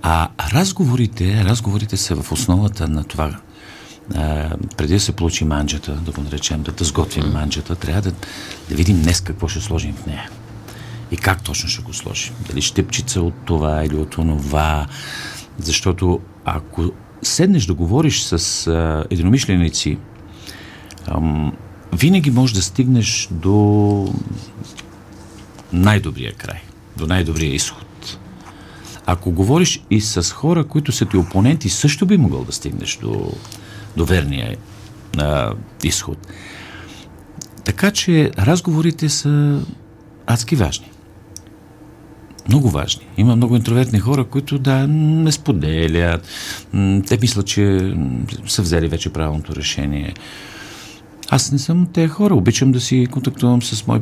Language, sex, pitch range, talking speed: Bulgarian, male, 85-120 Hz, 130 wpm